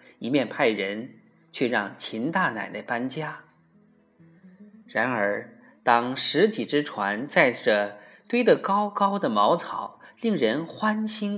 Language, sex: Chinese, male